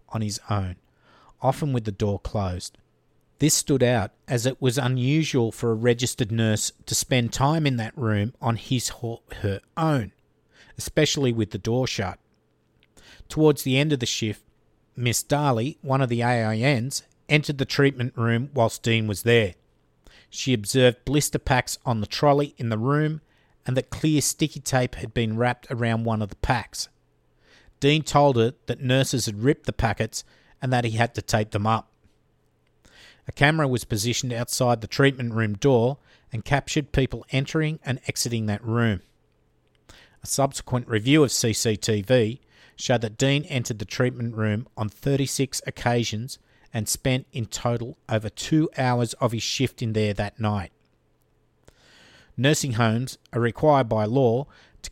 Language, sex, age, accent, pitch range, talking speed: English, male, 50-69, Australian, 110-135 Hz, 160 wpm